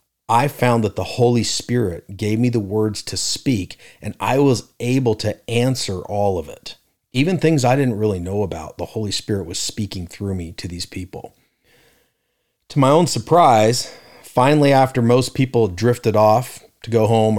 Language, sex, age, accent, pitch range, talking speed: English, male, 40-59, American, 95-120 Hz, 175 wpm